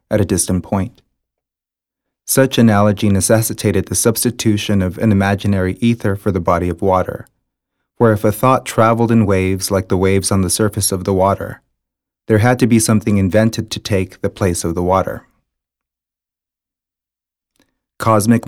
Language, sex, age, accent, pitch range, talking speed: English, male, 30-49, American, 90-110 Hz, 155 wpm